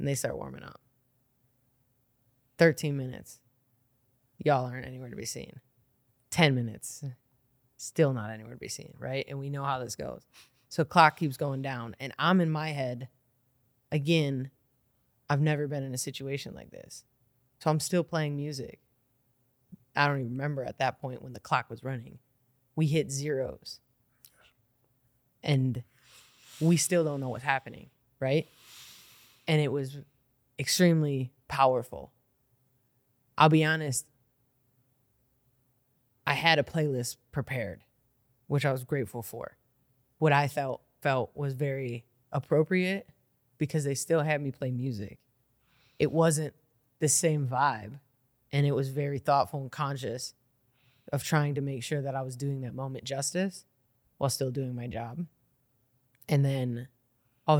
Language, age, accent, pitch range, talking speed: English, 20-39, American, 125-145 Hz, 145 wpm